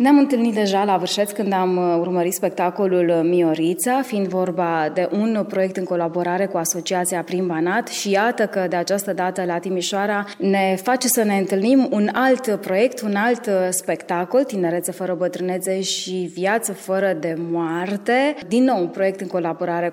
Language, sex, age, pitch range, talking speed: Romanian, female, 20-39, 175-210 Hz, 165 wpm